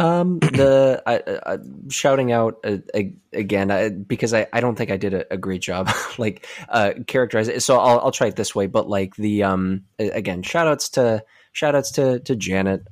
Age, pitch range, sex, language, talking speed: 20-39, 90-110 Hz, male, English, 215 wpm